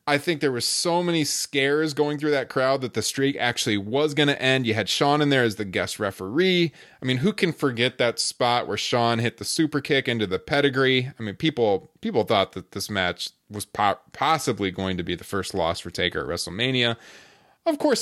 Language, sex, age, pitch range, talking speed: English, male, 20-39, 100-140 Hz, 225 wpm